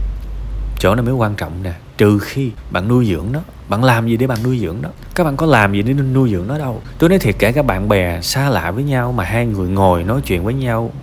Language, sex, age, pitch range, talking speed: Vietnamese, male, 20-39, 105-140 Hz, 265 wpm